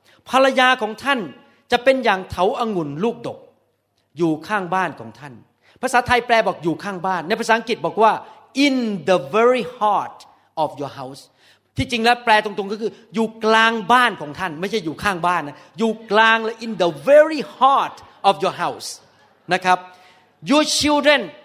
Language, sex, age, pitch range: Thai, male, 30-49, 185-265 Hz